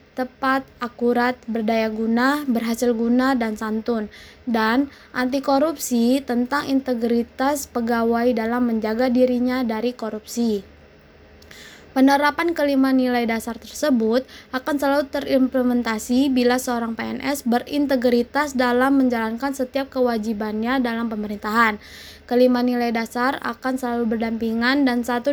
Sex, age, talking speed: female, 20-39, 105 wpm